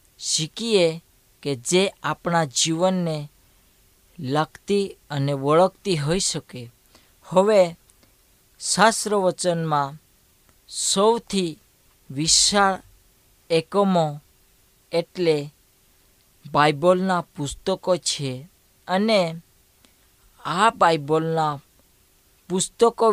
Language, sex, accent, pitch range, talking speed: Hindi, female, native, 135-185 Hz, 50 wpm